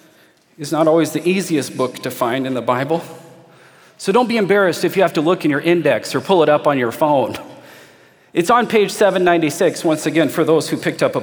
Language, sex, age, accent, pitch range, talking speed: English, male, 40-59, American, 170-270 Hz, 225 wpm